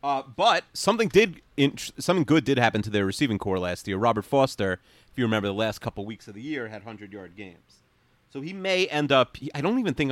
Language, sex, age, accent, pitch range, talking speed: English, male, 30-49, American, 100-140 Hz, 230 wpm